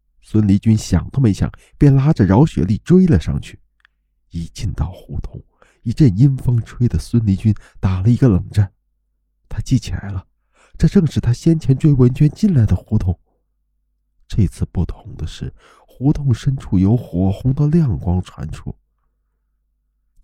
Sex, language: male, Chinese